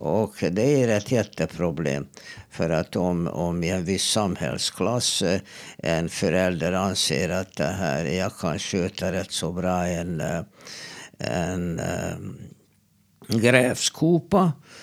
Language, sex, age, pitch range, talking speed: Swedish, male, 60-79, 90-110 Hz, 115 wpm